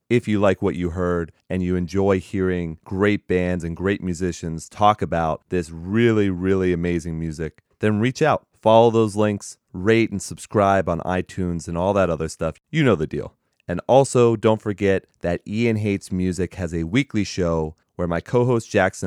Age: 30-49